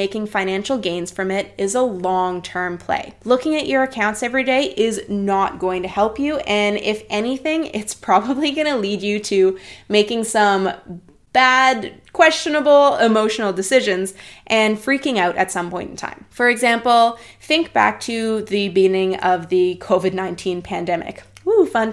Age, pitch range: 20-39, 195-245 Hz